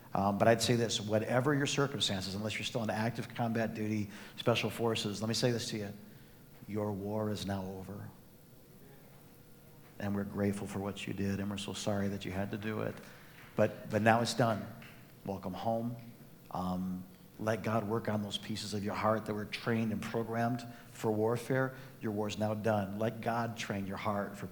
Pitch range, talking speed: 105-120 Hz, 195 wpm